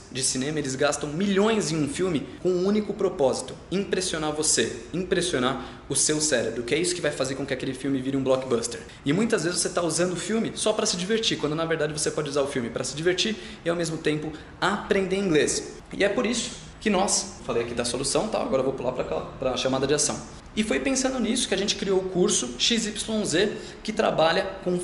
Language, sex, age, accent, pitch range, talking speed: Portuguese, male, 20-39, Brazilian, 145-205 Hz, 220 wpm